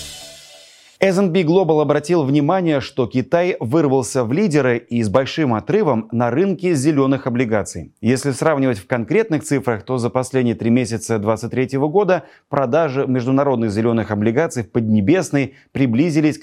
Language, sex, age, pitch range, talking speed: Russian, male, 30-49, 115-150 Hz, 130 wpm